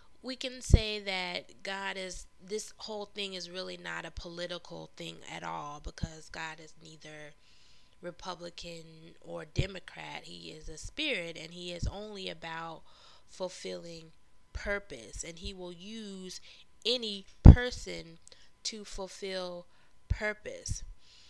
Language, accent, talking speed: English, American, 125 wpm